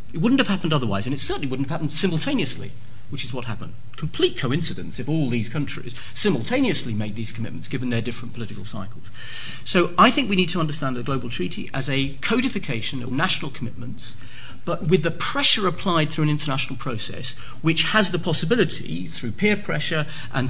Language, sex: English, male